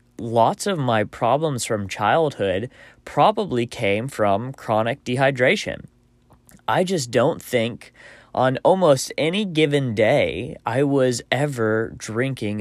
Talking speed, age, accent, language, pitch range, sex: 115 wpm, 20-39, American, English, 110-140 Hz, male